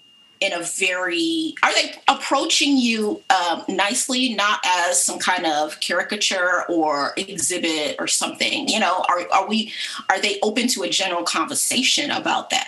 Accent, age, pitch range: American, 30-49, 205-320 Hz